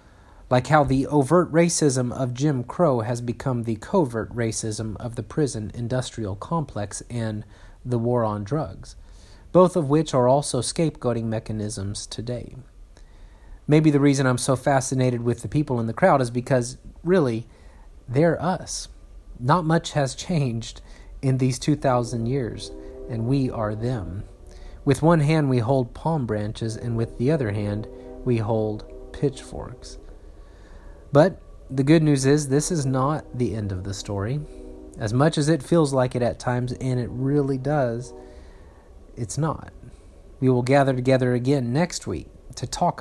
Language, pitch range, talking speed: English, 105-140 Hz, 155 wpm